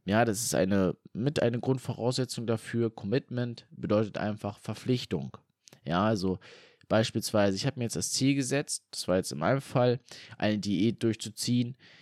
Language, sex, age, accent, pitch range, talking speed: German, male, 20-39, German, 105-135 Hz, 155 wpm